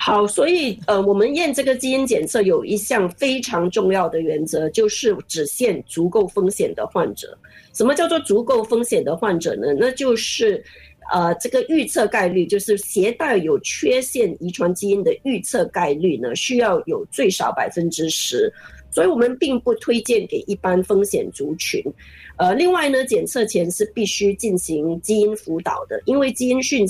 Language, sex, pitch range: Chinese, female, 185-275 Hz